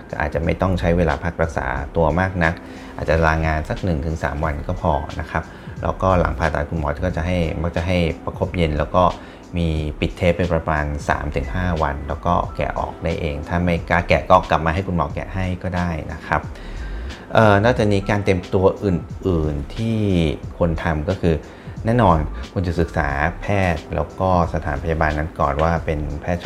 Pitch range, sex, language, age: 80-90 Hz, male, Thai, 30-49